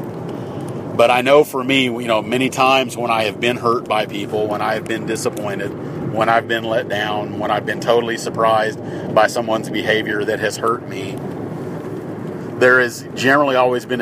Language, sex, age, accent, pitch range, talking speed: English, male, 40-59, American, 110-125 Hz, 185 wpm